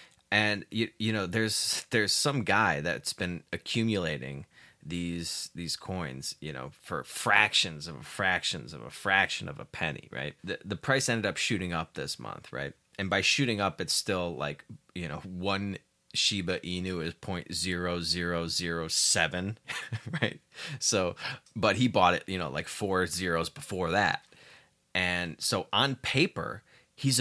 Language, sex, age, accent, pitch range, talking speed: English, male, 30-49, American, 85-115 Hz, 160 wpm